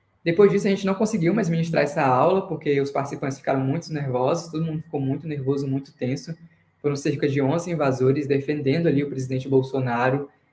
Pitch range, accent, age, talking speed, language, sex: 135-160 Hz, Brazilian, 20-39, 190 wpm, Portuguese, female